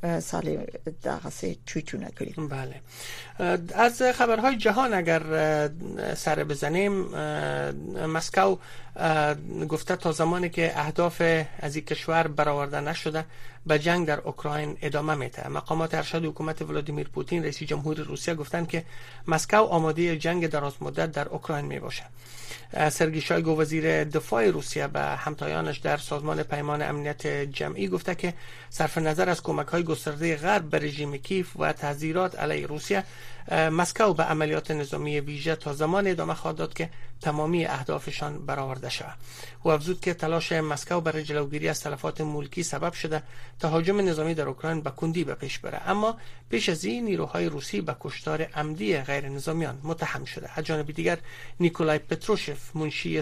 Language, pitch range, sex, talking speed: Persian, 145-170 Hz, male, 145 wpm